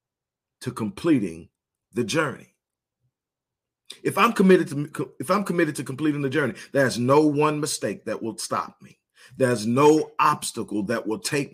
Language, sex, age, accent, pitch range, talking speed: English, male, 40-59, American, 110-150 Hz, 135 wpm